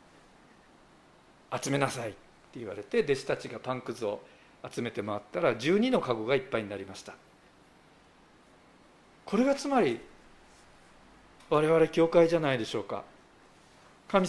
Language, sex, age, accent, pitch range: Japanese, male, 50-69, native, 125-195 Hz